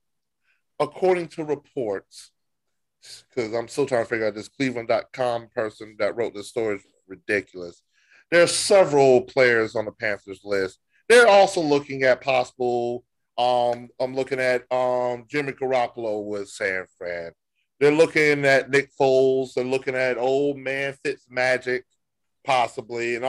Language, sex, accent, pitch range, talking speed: English, male, American, 125-165 Hz, 145 wpm